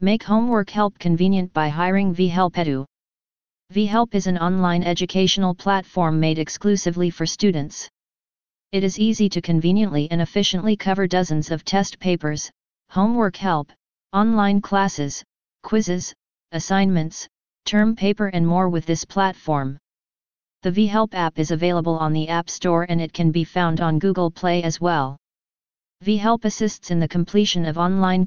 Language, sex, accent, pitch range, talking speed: English, female, American, 170-195 Hz, 145 wpm